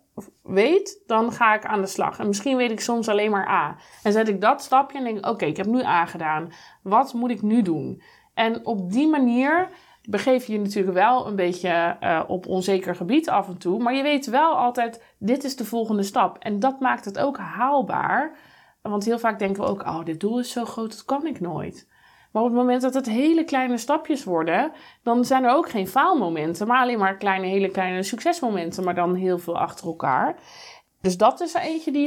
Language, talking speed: Dutch, 225 wpm